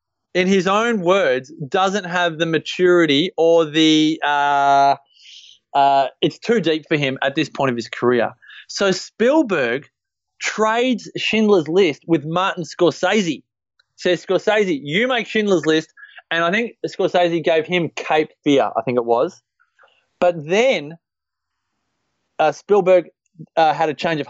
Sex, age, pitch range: male, 20-39, 145-195 Hz